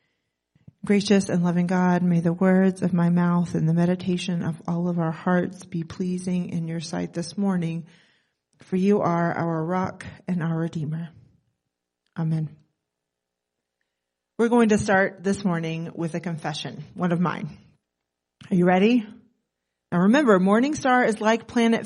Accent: American